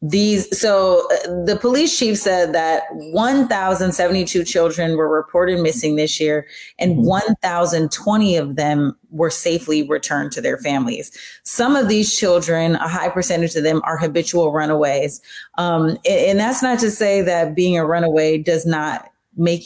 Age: 30-49